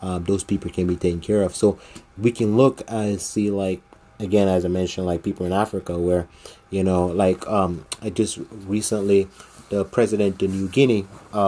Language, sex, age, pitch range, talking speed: English, male, 20-39, 90-105 Hz, 190 wpm